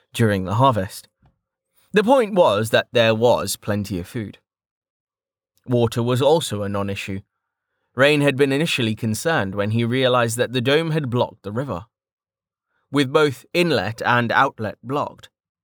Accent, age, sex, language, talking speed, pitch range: British, 20-39, male, English, 145 wpm, 100-135 Hz